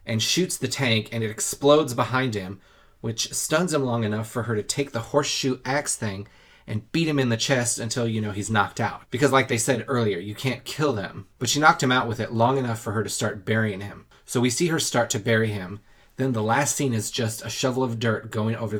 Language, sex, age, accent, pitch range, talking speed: English, male, 30-49, American, 110-135 Hz, 250 wpm